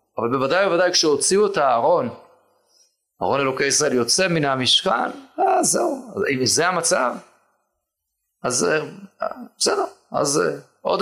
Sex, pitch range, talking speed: male, 130-195 Hz, 115 wpm